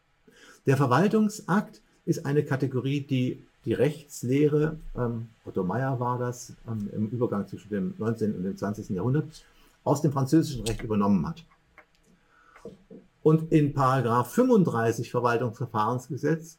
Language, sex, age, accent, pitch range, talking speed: German, male, 50-69, German, 125-165 Hz, 115 wpm